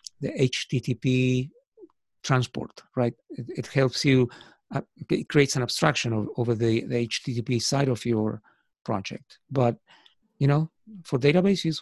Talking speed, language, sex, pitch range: 140 wpm, English, male, 120-140 Hz